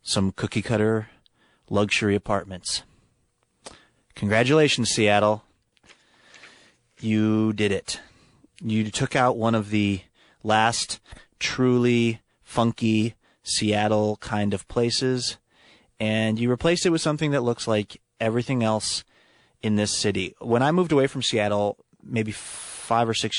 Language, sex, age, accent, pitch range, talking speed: English, male, 30-49, American, 105-125 Hz, 120 wpm